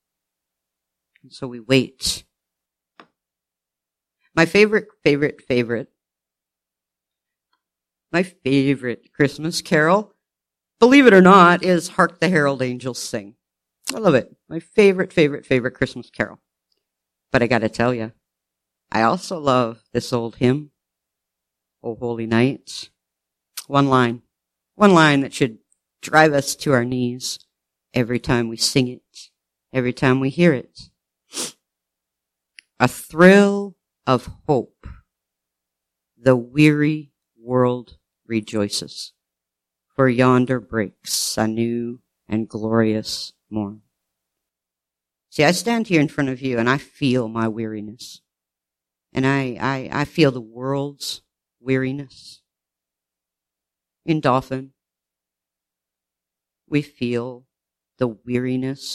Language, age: English, 50-69